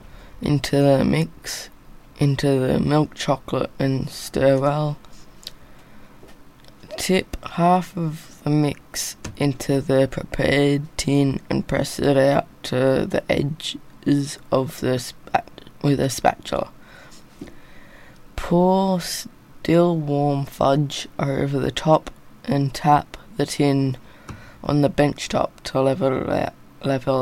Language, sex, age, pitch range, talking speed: English, female, 20-39, 135-155 Hz, 105 wpm